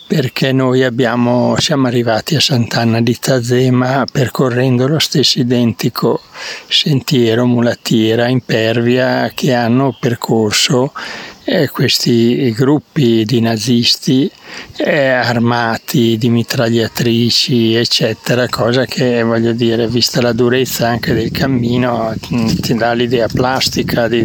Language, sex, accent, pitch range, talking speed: Italian, male, native, 120-130 Hz, 100 wpm